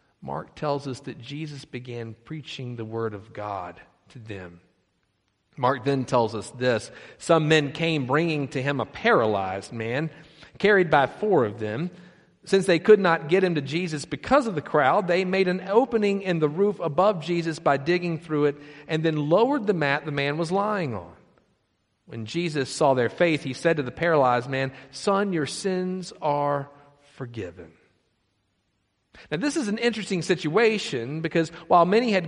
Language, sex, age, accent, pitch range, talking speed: English, male, 50-69, American, 135-180 Hz, 175 wpm